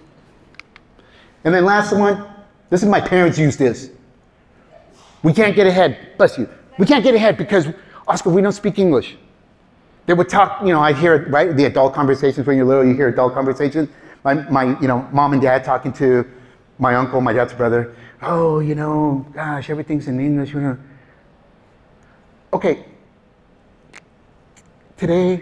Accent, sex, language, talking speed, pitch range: American, male, English, 165 wpm, 140-205 Hz